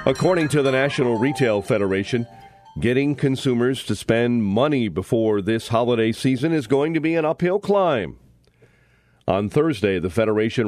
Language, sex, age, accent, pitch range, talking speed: English, male, 40-59, American, 110-145 Hz, 145 wpm